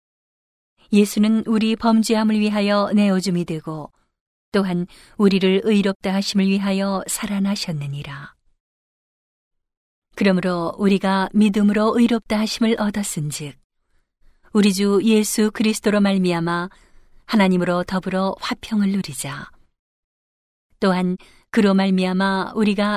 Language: Korean